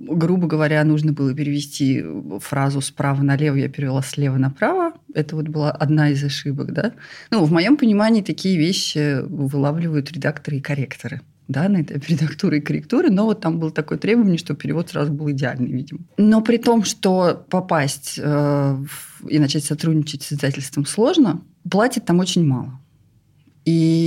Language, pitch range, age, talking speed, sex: Russian, 145-180 Hz, 30-49, 160 wpm, female